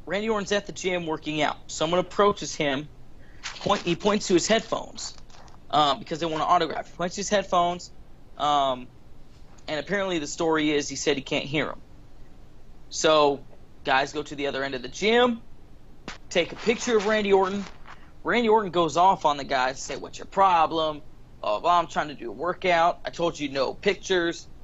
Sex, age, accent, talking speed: male, 30-49, American, 190 wpm